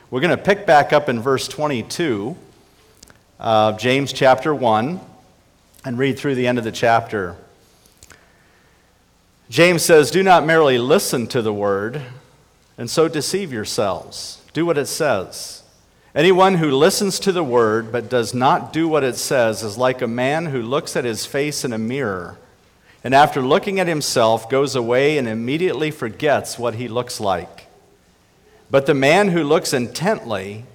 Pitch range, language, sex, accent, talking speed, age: 115-160 Hz, English, male, American, 160 wpm, 40-59